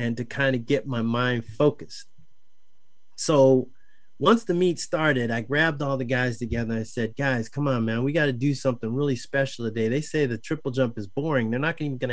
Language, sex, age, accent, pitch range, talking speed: English, male, 30-49, American, 115-150 Hz, 220 wpm